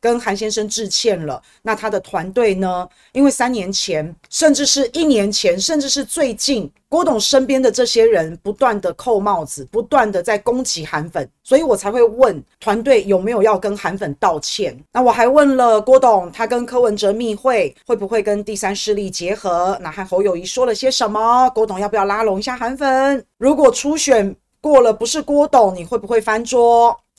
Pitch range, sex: 200-265 Hz, female